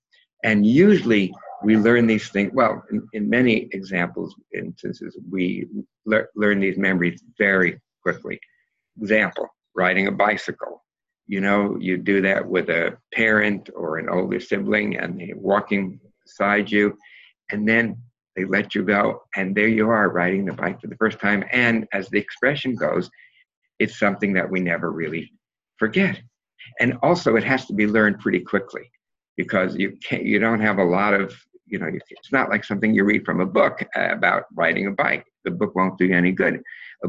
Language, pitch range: English, 95-120 Hz